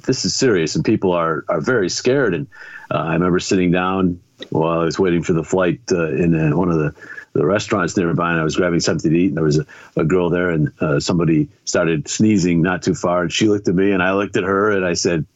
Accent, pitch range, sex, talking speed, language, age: American, 90-115 Hz, male, 260 wpm, English, 50-69